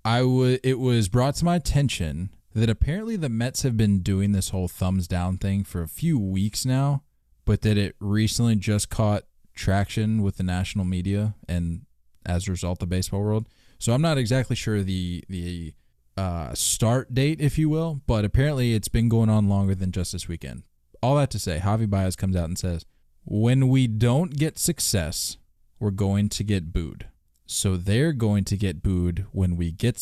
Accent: American